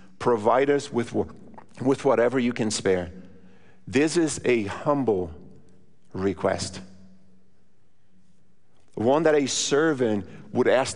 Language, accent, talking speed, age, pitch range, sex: English, American, 105 wpm, 50-69, 105-145 Hz, male